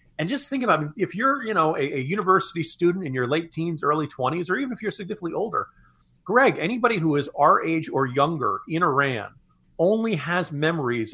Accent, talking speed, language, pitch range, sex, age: American, 200 wpm, English, 140-195 Hz, male, 40-59